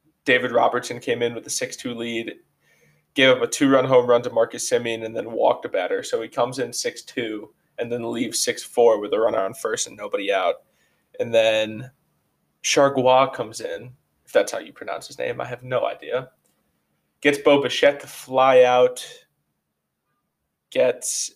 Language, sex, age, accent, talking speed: English, male, 20-39, American, 175 wpm